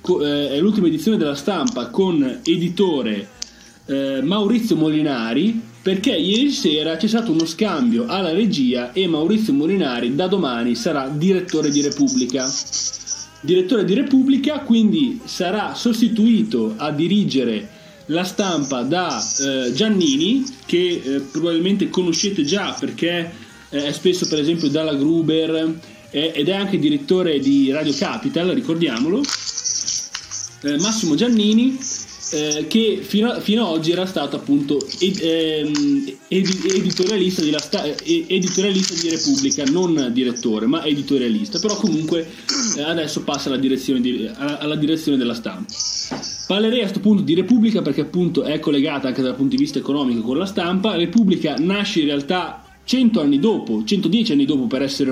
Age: 30-49